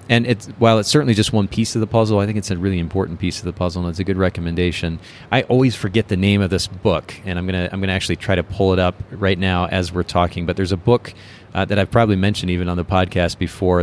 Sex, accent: male, American